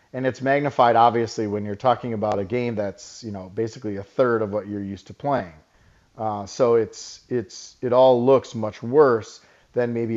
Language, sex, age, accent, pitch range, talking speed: English, male, 40-59, American, 110-140 Hz, 195 wpm